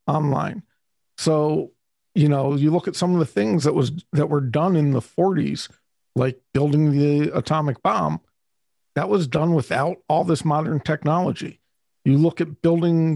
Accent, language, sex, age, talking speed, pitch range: American, English, male, 50-69, 165 wpm, 145-165 Hz